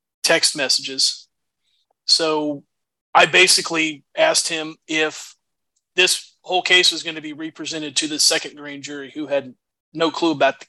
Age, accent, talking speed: 30-49, American, 150 wpm